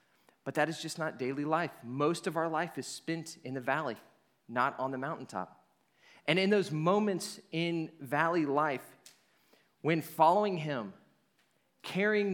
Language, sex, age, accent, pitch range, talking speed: English, male, 30-49, American, 135-190 Hz, 150 wpm